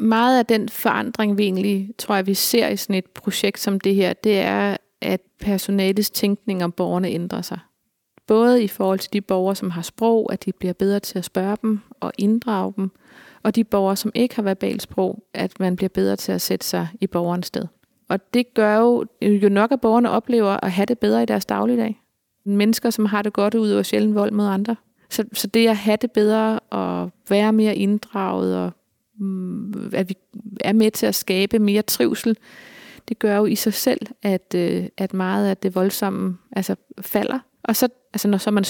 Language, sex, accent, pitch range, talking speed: Danish, female, native, 190-220 Hz, 200 wpm